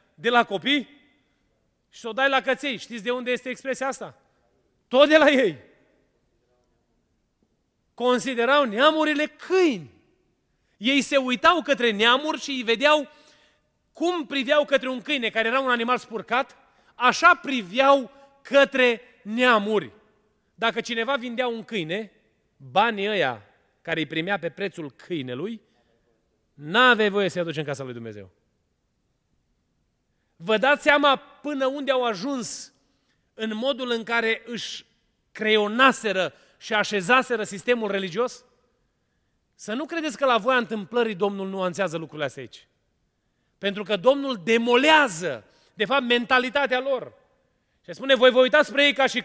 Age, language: 30-49, Romanian